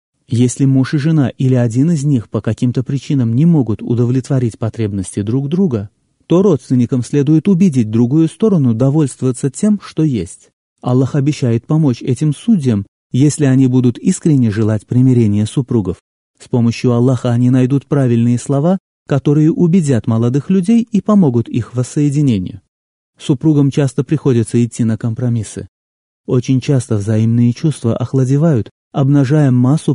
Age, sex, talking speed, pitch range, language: 30-49, male, 135 wpm, 115-145 Hz, Russian